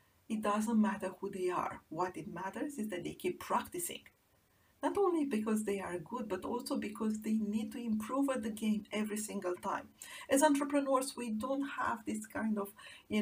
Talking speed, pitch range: 190 wpm, 200-275 Hz